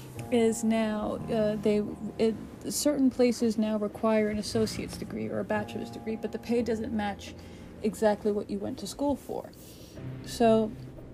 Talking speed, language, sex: 155 wpm, English, female